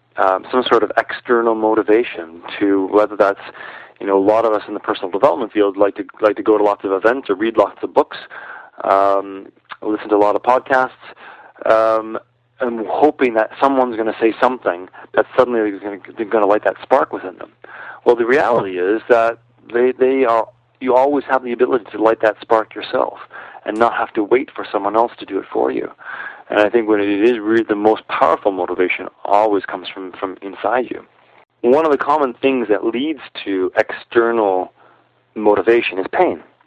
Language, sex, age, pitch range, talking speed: English, male, 40-59, 105-125 Hz, 195 wpm